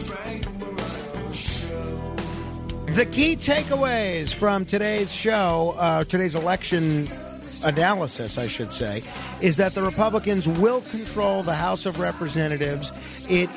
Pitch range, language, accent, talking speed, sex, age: 150-185 Hz, English, American, 105 wpm, male, 50-69